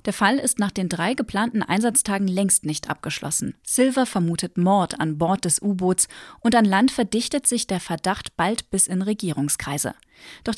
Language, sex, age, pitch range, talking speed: German, female, 30-49, 175-225 Hz, 170 wpm